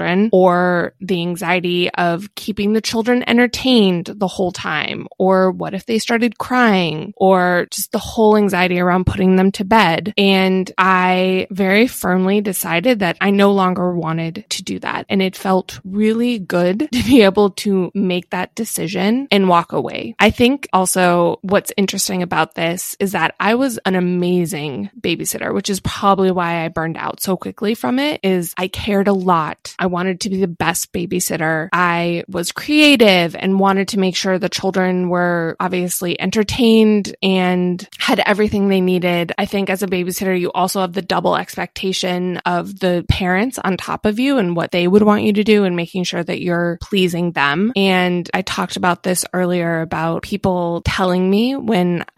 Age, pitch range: 20-39, 175-205 Hz